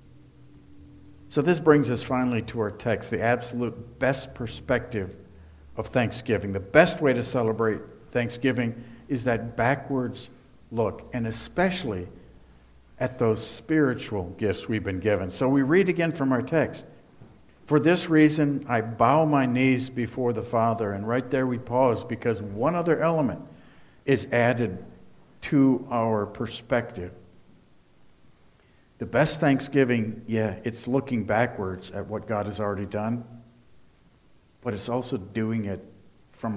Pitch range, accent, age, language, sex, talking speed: 100-130 Hz, American, 60-79, English, male, 135 wpm